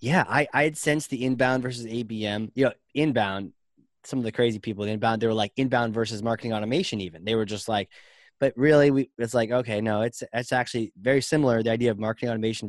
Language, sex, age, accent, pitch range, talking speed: English, male, 20-39, American, 110-145 Hz, 225 wpm